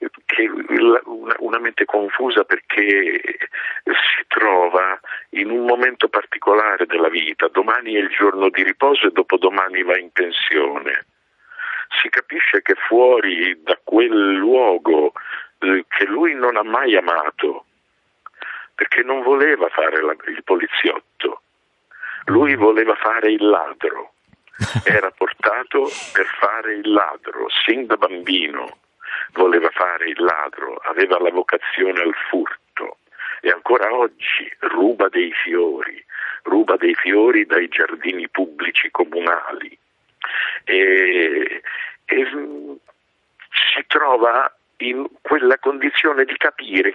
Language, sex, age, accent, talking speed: Italian, male, 50-69, native, 110 wpm